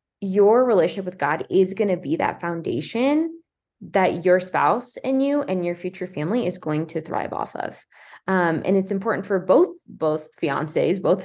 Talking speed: 180 wpm